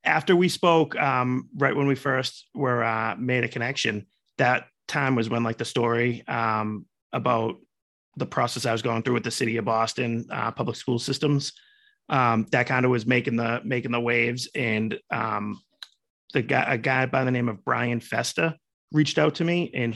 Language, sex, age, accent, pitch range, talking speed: English, male, 30-49, American, 115-135 Hz, 190 wpm